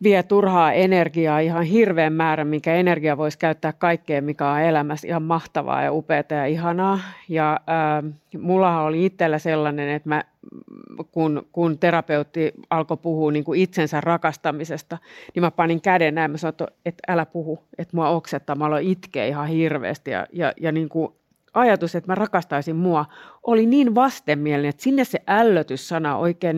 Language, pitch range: Finnish, 155-190 Hz